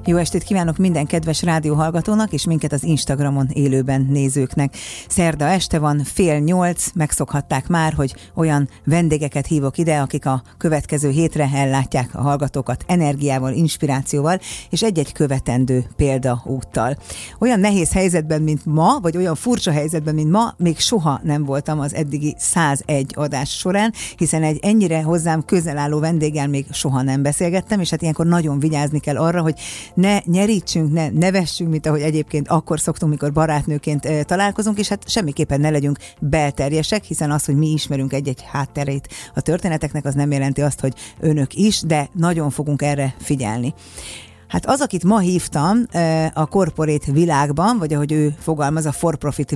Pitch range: 145-170 Hz